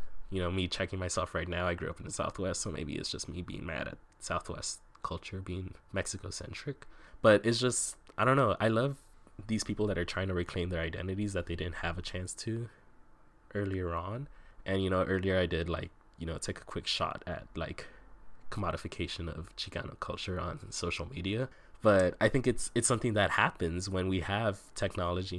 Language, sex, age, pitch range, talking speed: English, male, 20-39, 90-105 Hz, 205 wpm